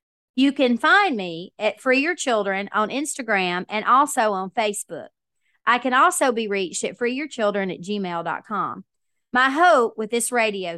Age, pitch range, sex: 30-49, 200-260 Hz, female